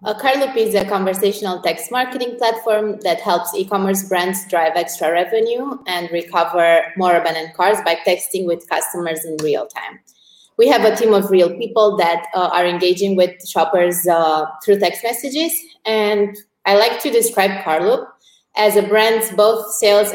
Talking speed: 165 wpm